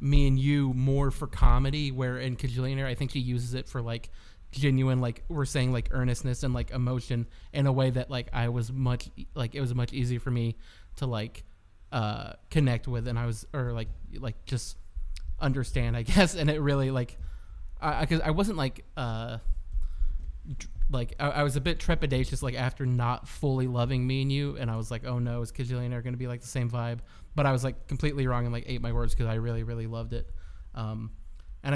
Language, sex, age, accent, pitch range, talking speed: English, male, 20-39, American, 120-135 Hz, 215 wpm